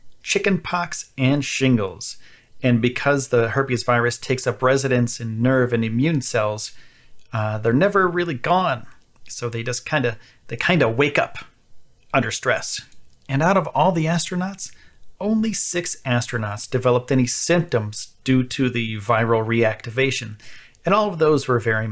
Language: English